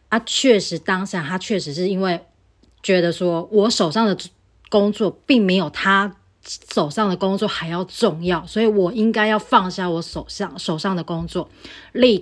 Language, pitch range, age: Chinese, 165-200 Hz, 20-39